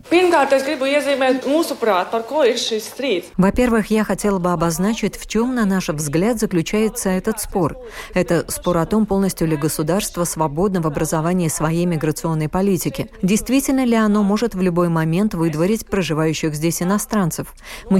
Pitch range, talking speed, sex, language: 165-215 Hz, 125 wpm, female, Russian